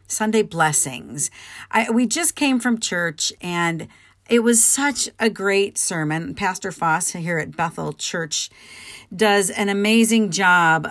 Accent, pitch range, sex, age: American, 155-225 Hz, female, 40-59